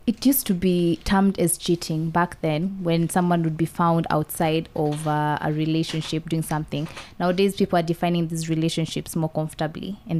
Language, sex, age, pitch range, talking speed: English, female, 20-39, 155-185 Hz, 170 wpm